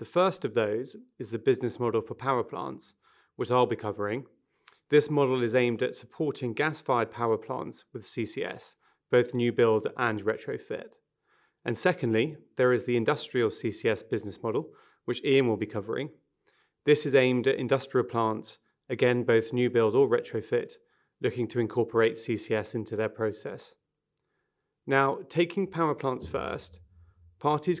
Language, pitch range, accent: English, 115-145 Hz, British